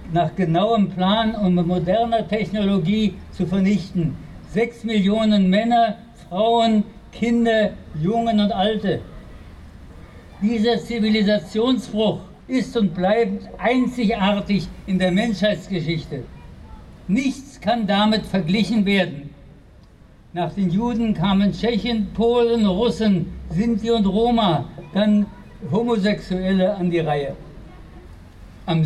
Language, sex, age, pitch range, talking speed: German, male, 60-79, 180-220 Hz, 95 wpm